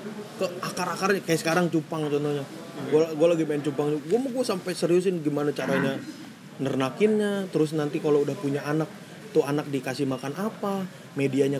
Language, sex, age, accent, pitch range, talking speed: Indonesian, male, 30-49, native, 145-195 Hz, 160 wpm